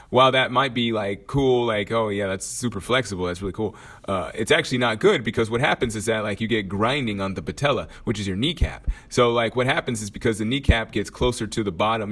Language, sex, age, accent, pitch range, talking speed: English, male, 30-49, American, 95-115 Hz, 245 wpm